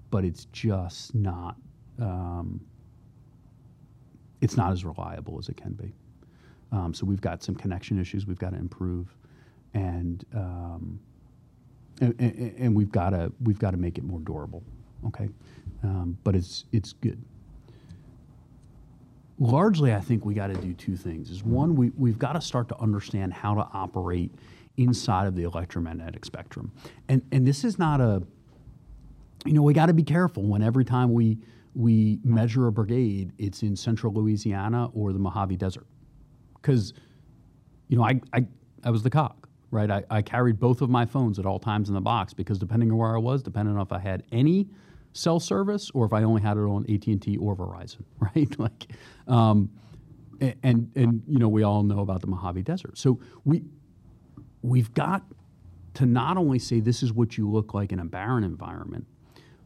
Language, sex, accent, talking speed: English, male, American, 180 wpm